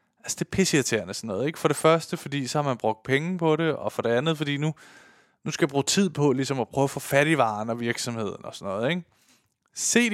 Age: 20-39